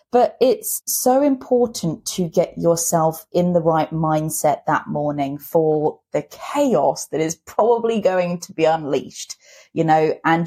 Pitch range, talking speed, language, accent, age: 160-225 Hz, 150 wpm, English, British, 20-39